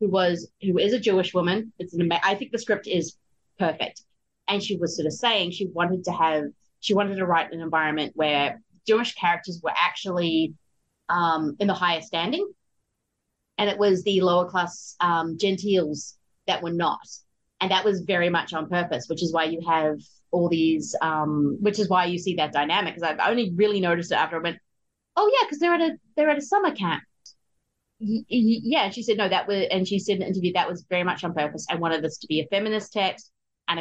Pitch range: 170-215 Hz